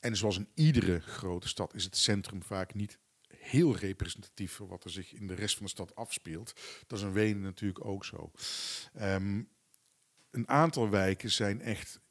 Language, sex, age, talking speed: Dutch, male, 50-69, 180 wpm